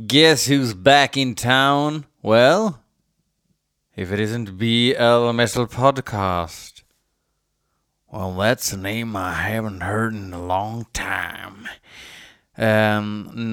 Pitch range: 105-135 Hz